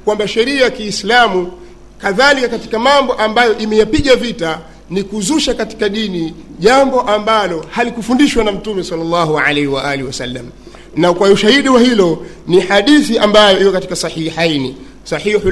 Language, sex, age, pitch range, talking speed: Swahili, male, 50-69, 175-235 Hz, 135 wpm